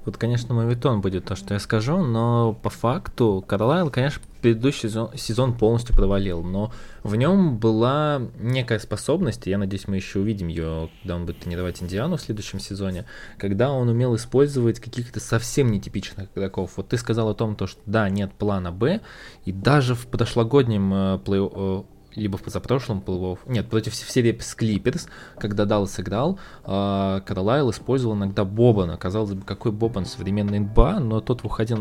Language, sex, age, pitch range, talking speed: Russian, male, 20-39, 100-120 Hz, 165 wpm